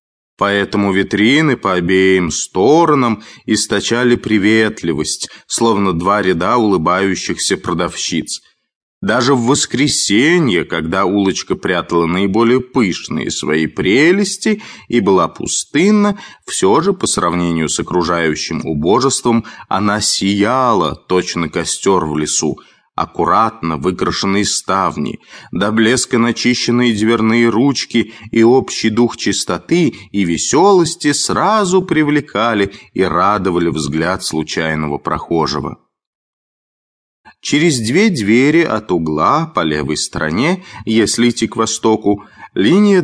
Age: 20-39